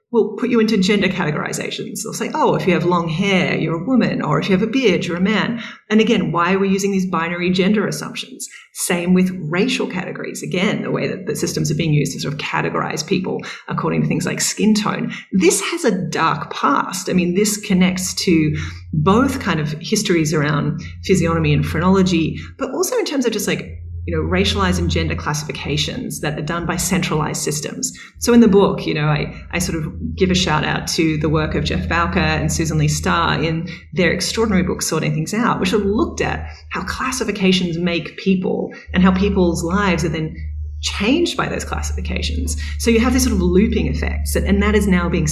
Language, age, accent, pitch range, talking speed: English, 30-49, Australian, 155-200 Hz, 210 wpm